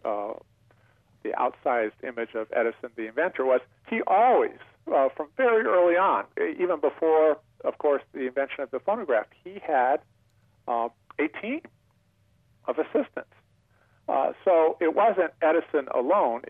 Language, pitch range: English, 115-165 Hz